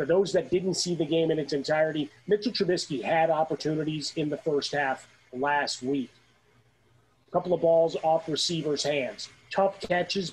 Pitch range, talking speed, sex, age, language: 145-165 Hz, 170 wpm, male, 30-49, English